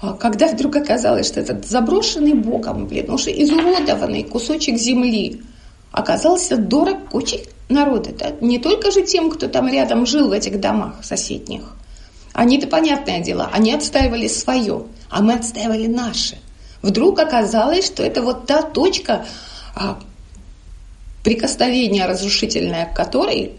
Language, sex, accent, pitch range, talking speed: Russian, female, native, 205-295 Hz, 130 wpm